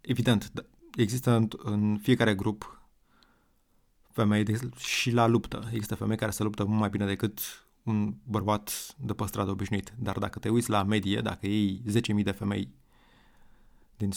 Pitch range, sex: 105-120 Hz, male